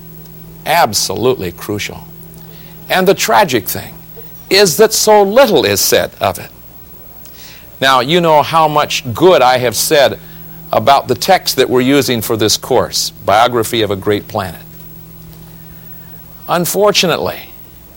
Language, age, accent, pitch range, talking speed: English, 50-69, American, 130-165 Hz, 125 wpm